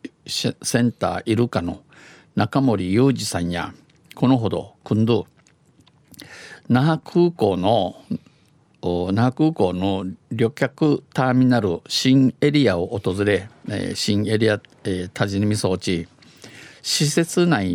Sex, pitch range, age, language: male, 100-125 Hz, 50-69, Japanese